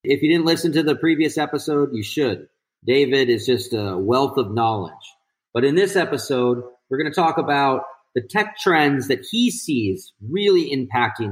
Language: English